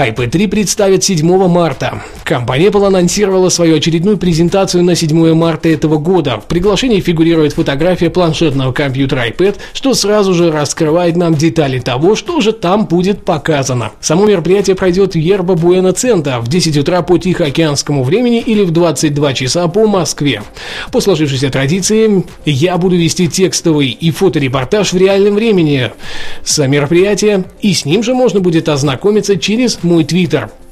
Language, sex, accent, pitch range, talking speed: Russian, male, native, 155-195 Hz, 150 wpm